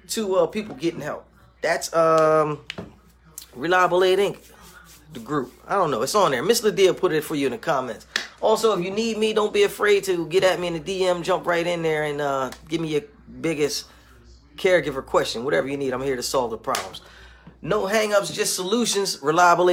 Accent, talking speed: American, 205 wpm